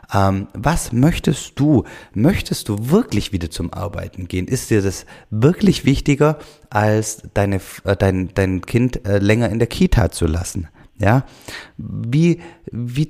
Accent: German